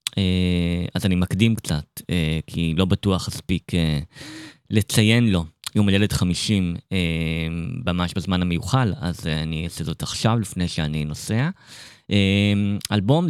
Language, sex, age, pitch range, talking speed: Hebrew, male, 20-39, 90-120 Hz, 115 wpm